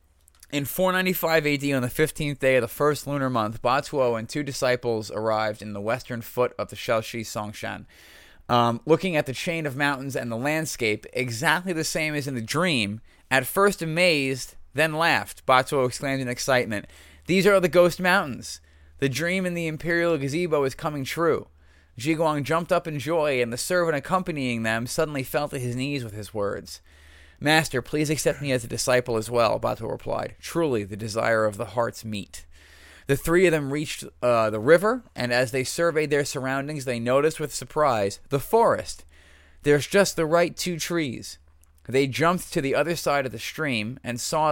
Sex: male